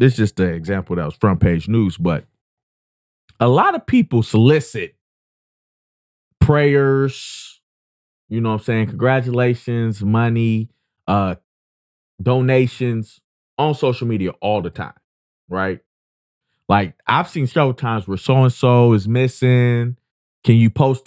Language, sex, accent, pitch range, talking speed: English, male, American, 110-150 Hz, 125 wpm